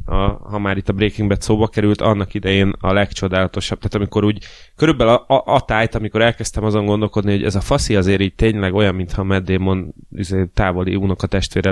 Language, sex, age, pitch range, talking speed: Hungarian, male, 20-39, 95-110 Hz, 200 wpm